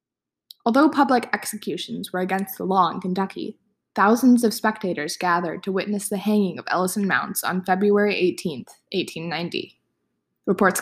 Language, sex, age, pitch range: English, female, 20-39, 180-230 Hz